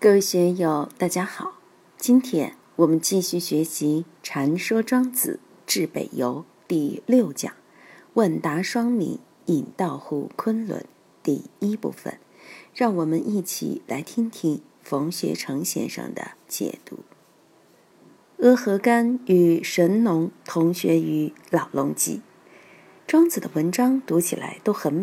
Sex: female